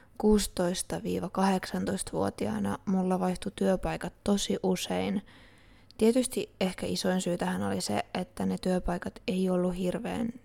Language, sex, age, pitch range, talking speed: Finnish, female, 20-39, 185-210 Hz, 105 wpm